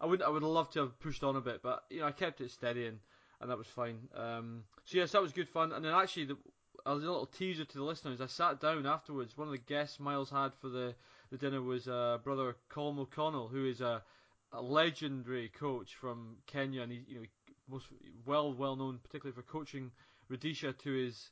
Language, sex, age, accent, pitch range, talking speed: English, male, 20-39, British, 125-155 Hz, 235 wpm